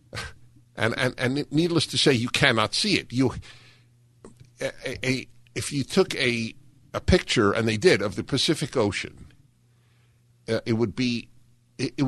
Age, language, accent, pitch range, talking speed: 50-69, English, American, 110-130 Hz, 160 wpm